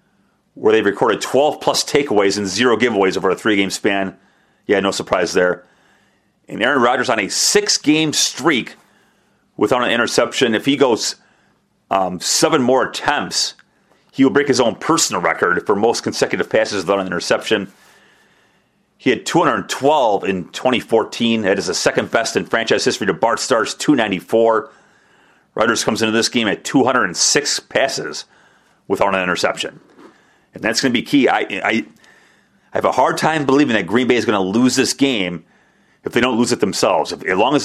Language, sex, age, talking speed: English, male, 40-59, 170 wpm